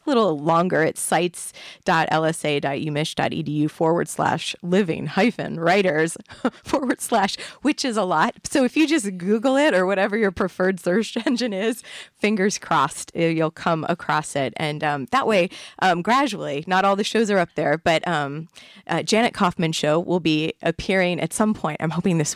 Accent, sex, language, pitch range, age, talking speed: American, female, English, 160-205 Hz, 30-49, 165 wpm